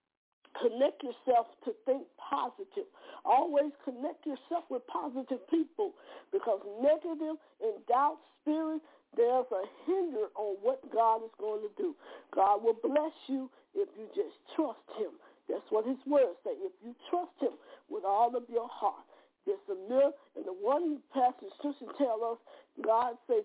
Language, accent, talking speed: English, American, 160 wpm